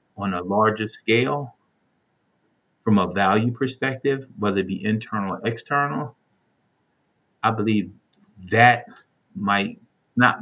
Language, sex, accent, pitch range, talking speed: English, male, American, 95-115 Hz, 110 wpm